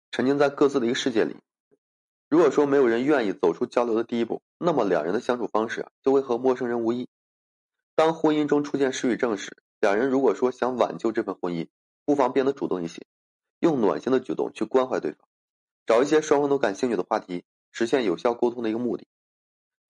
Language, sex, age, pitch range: Chinese, male, 20-39, 115-140 Hz